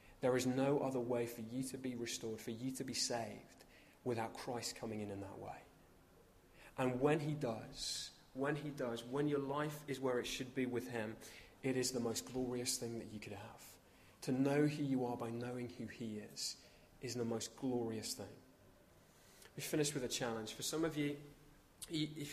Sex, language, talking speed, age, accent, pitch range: male, English, 200 wpm, 20-39, British, 115-145 Hz